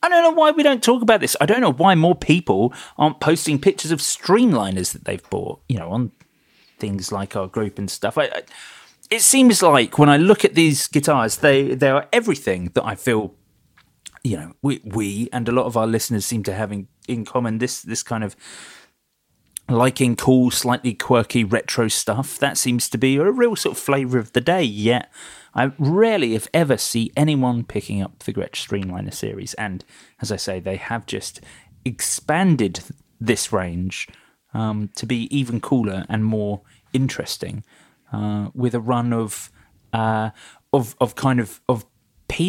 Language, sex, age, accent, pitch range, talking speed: English, male, 30-49, British, 110-150 Hz, 185 wpm